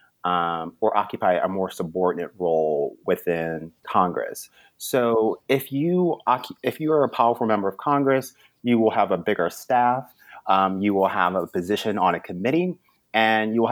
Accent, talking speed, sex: American, 165 wpm, male